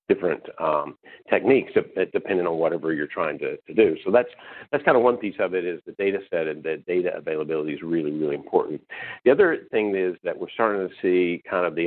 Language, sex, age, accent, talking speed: English, male, 50-69, American, 220 wpm